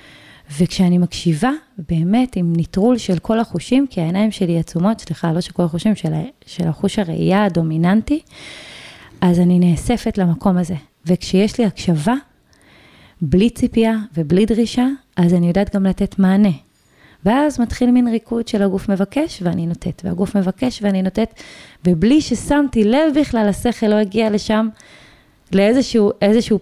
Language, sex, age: Hebrew, female, 20-39